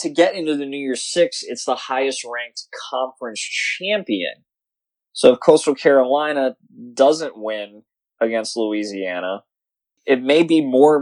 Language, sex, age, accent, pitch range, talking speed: English, male, 20-39, American, 115-150 Hz, 130 wpm